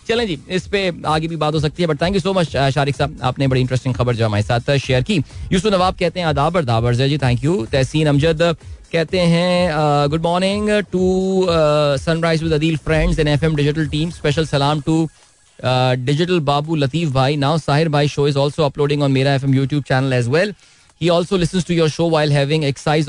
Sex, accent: male, native